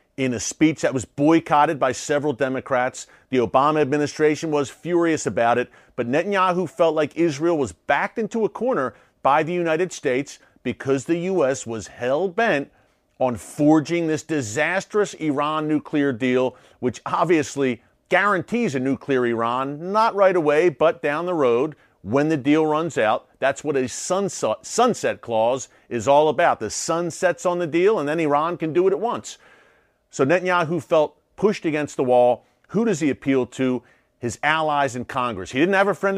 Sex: male